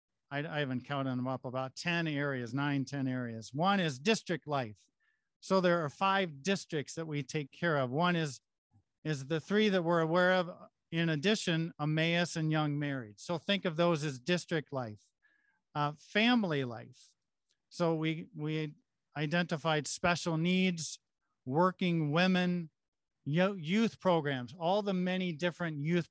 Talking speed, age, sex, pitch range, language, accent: 150 wpm, 50-69, male, 145-175 Hz, English, American